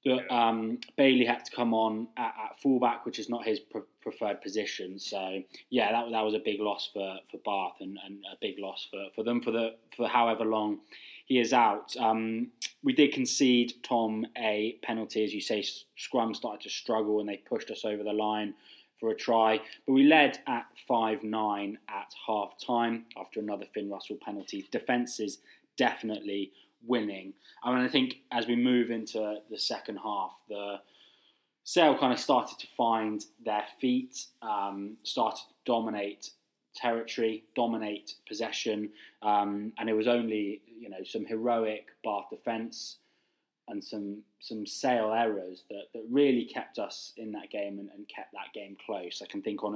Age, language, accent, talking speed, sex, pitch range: 20-39, English, British, 175 wpm, male, 105-120 Hz